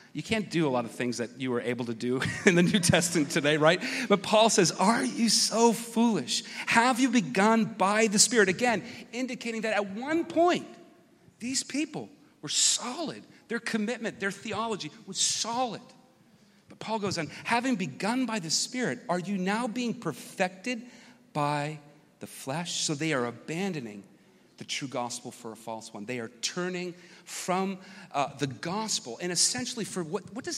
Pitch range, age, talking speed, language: 155-225 Hz, 40-59, 175 wpm, English